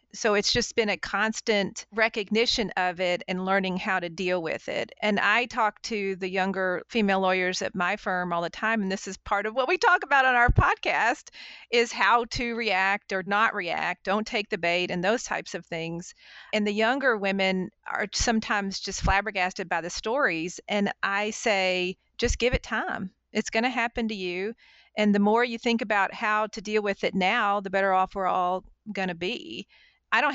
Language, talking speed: English, 200 wpm